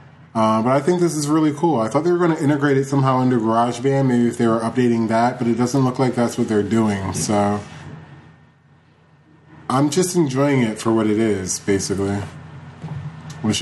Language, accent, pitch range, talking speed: English, American, 115-145 Hz, 200 wpm